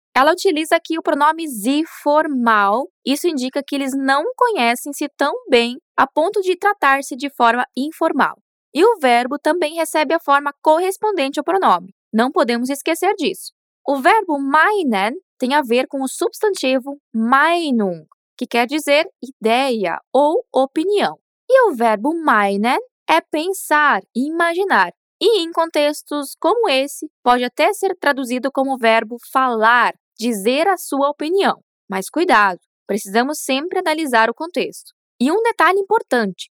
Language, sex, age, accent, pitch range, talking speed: Portuguese, female, 10-29, Brazilian, 245-335 Hz, 140 wpm